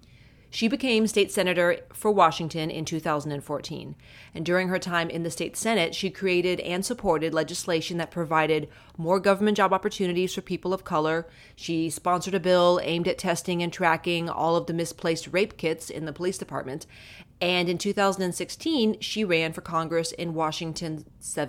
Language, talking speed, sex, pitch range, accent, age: English, 165 wpm, female, 160-185 Hz, American, 30-49